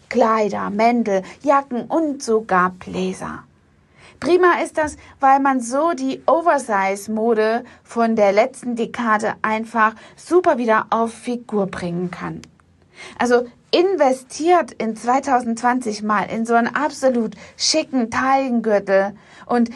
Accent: German